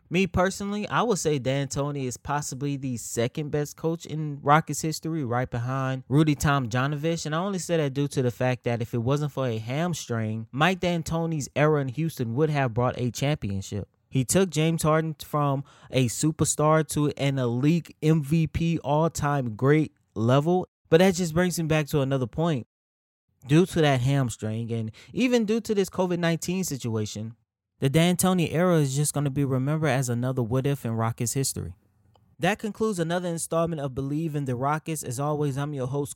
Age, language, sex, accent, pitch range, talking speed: 20-39, English, male, American, 125-160 Hz, 185 wpm